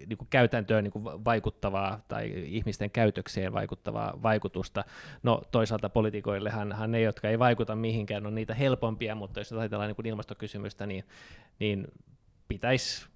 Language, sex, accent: Finnish, male, native